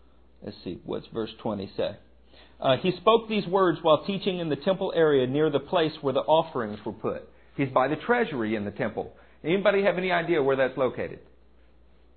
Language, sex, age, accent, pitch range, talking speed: English, male, 50-69, American, 125-190 Hz, 190 wpm